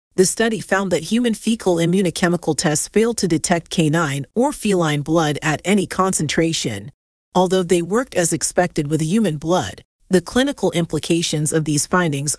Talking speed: 155 wpm